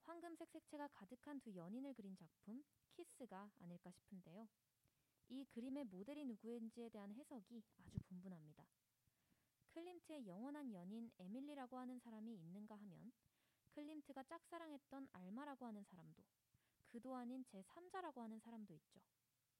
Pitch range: 190-275 Hz